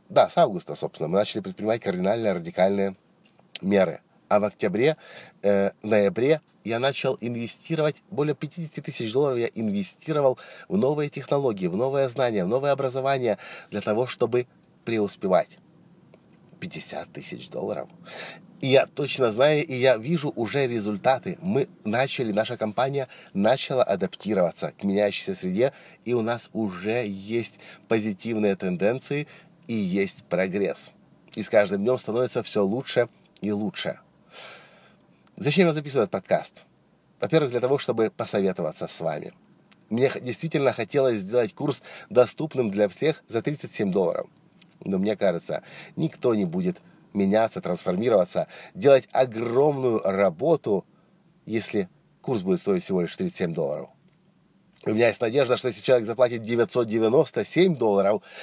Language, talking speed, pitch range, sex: Russian, 135 wpm, 110-155 Hz, male